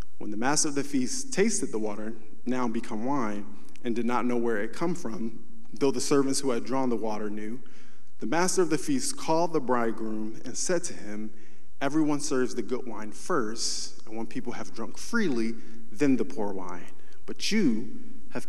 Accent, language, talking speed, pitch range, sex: American, English, 195 wpm, 115-155 Hz, male